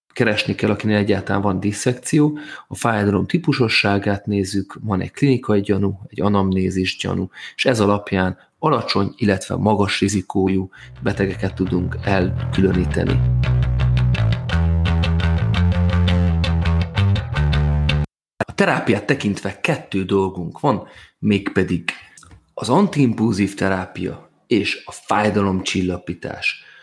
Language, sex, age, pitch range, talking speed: Hungarian, male, 30-49, 95-110 Hz, 90 wpm